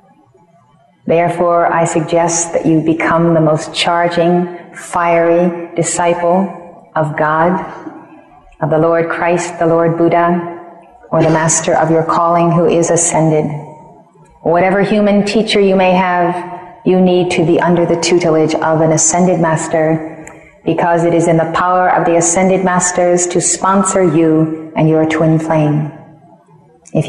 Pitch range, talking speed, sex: 160-180 Hz, 140 wpm, female